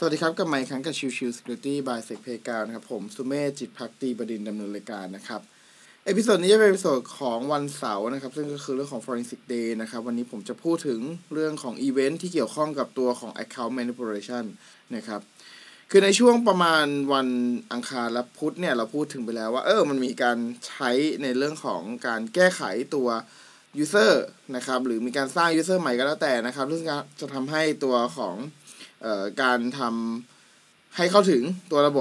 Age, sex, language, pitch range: 20-39, male, Thai, 120-160 Hz